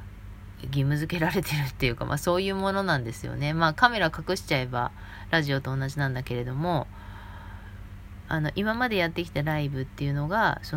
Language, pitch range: Japanese, 100-170 Hz